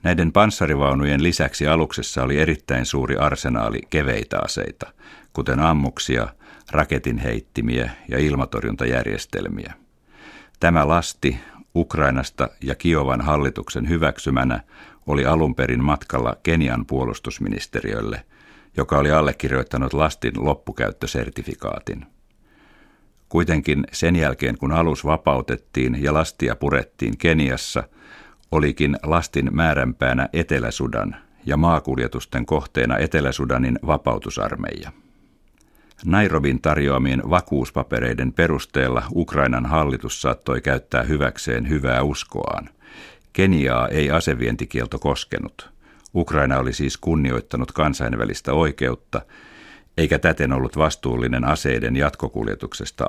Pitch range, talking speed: 65-80 Hz, 90 wpm